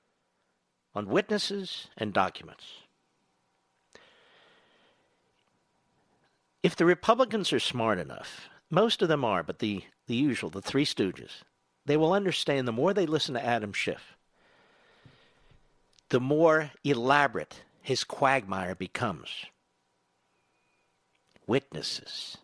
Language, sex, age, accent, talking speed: English, male, 60-79, American, 100 wpm